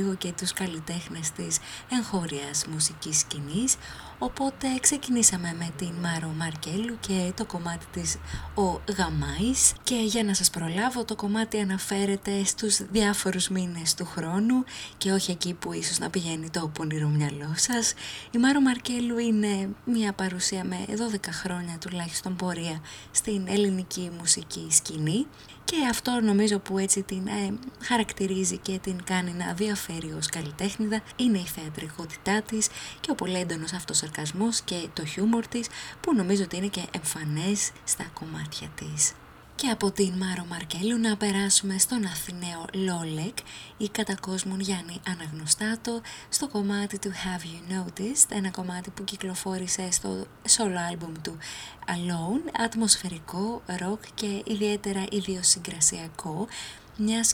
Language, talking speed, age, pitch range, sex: English, 135 wpm, 20-39, 170-210 Hz, female